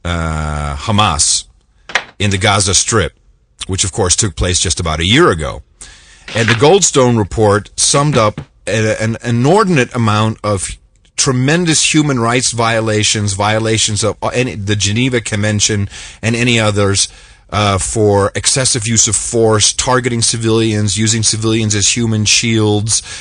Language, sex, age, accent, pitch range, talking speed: English, male, 40-59, American, 95-115 Hz, 135 wpm